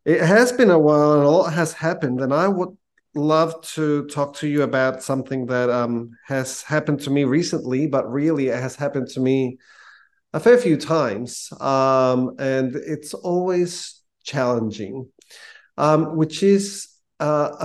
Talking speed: 160 wpm